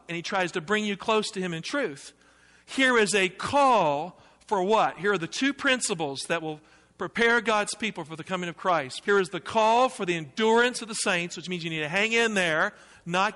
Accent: American